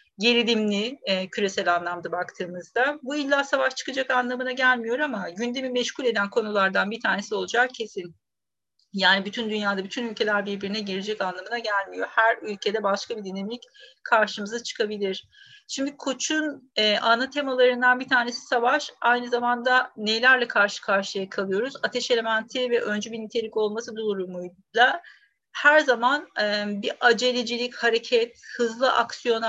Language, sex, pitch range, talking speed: Turkish, female, 200-250 Hz, 135 wpm